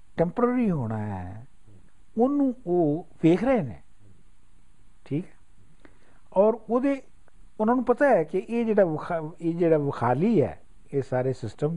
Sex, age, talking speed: male, 60-79, 125 wpm